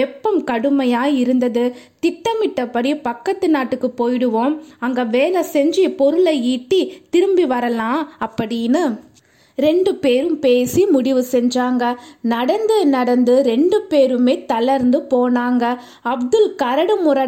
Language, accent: Tamil, native